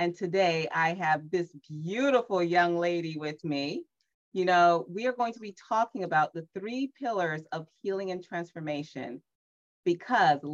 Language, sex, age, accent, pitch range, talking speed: English, female, 30-49, American, 165-240 Hz, 155 wpm